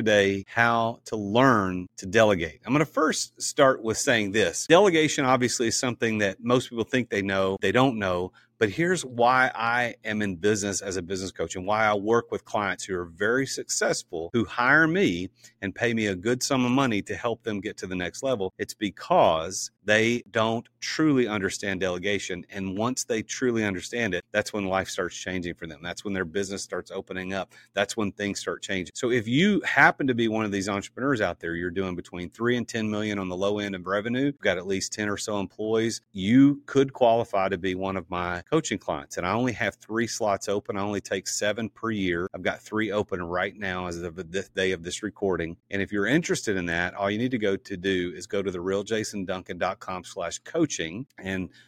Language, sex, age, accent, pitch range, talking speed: English, male, 40-59, American, 95-115 Hz, 220 wpm